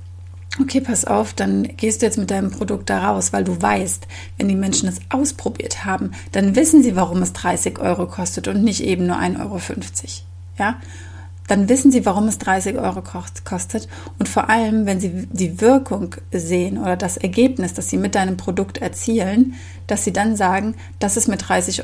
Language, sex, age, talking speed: German, female, 30-49, 190 wpm